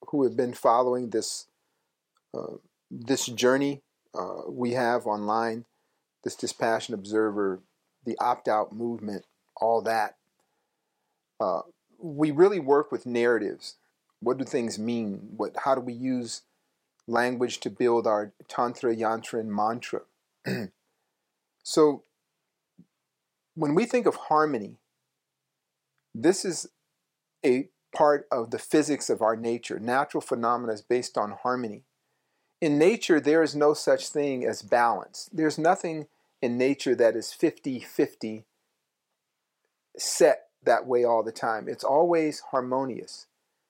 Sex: male